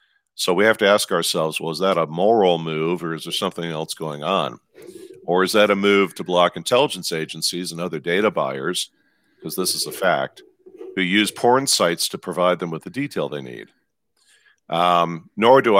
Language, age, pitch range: English, 50-69, 80-100 Hz